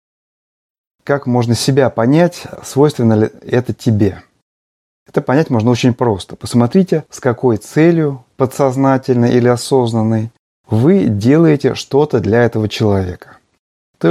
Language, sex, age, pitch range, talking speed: Russian, male, 30-49, 110-135 Hz, 115 wpm